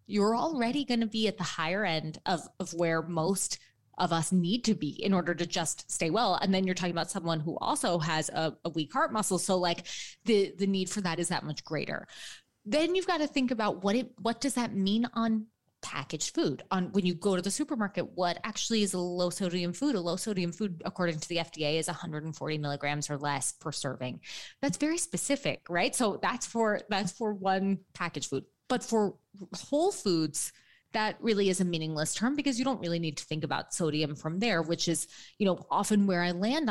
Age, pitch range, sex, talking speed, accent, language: 20-39, 165-210 Hz, female, 220 wpm, American, English